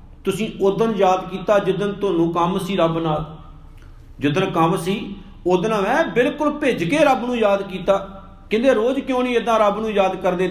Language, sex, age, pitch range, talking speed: Punjabi, male, 50-69, 165-220 Hz, 185 wpm